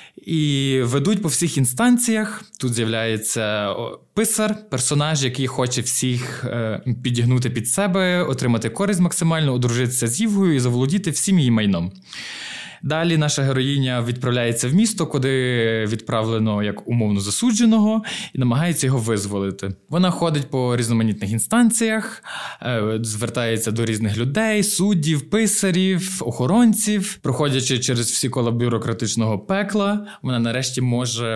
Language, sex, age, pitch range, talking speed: Ukrainian, male, 20-39, 120-185 Hz, 120 wpm